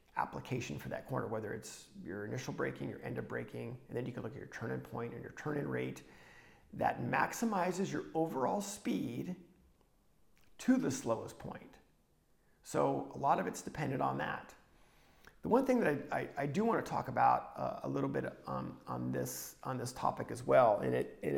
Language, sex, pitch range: English, male, 120-160 Hz